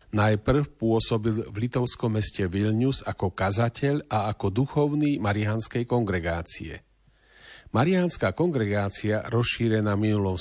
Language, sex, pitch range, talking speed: Slovak, male, 105-125 Hz, 100 wpm